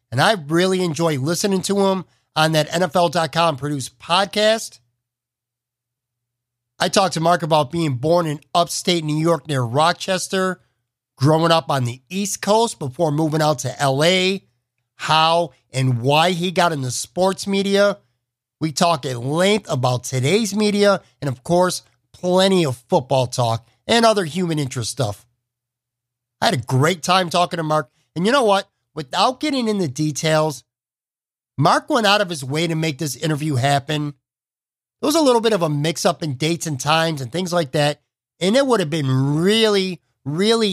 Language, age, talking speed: English, 50-69, 170 wpm